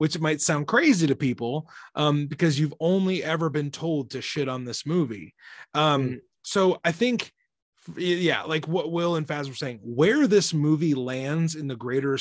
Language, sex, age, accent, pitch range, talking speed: English, male, 30-49, American, 130-170 Hz, 180 wpm